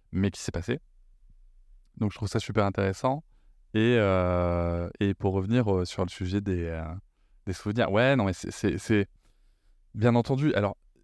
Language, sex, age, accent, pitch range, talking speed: French, male, 20-39, French, 95-110 Hz, 175 wpm